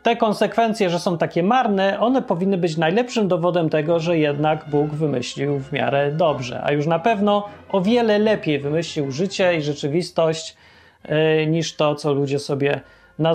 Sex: male